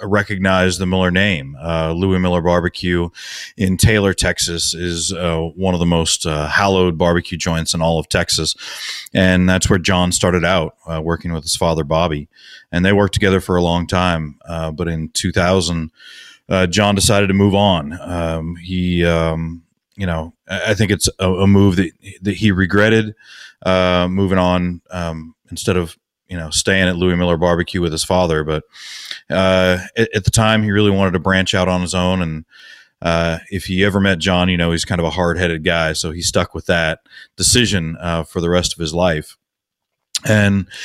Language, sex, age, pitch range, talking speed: English, male, 30-49, 85-95 Hz, 190 wpm